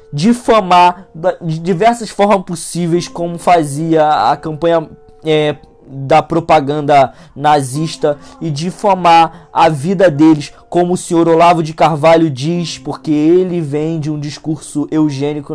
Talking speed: 120 wpm